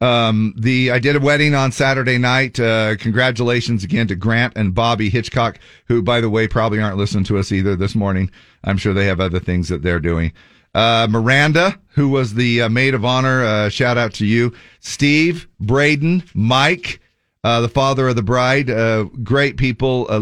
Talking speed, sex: 195 wpm, male